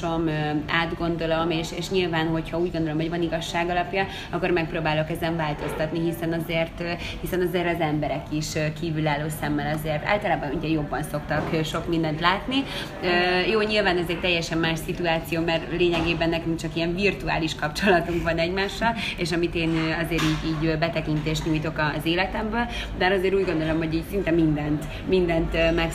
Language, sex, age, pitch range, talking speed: Hungarian, female, 30-49, 160-180 Hz, 155 wpm